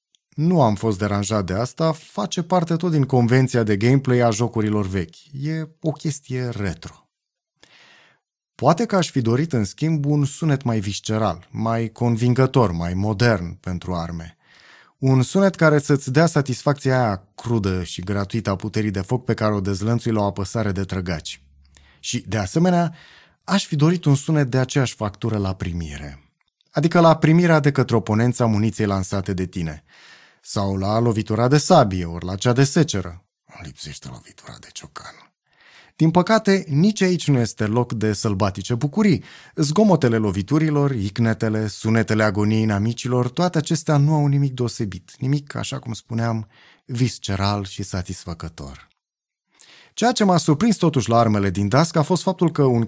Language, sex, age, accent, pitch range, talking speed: Romanian, male, 30-49, native, 100-150 Hz, 160 wpm